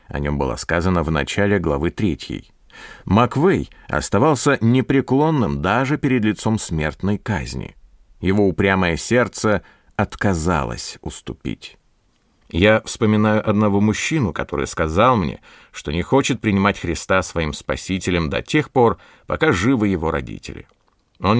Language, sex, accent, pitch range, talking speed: Russian, male, native, 90-125 Hz, 120 wpm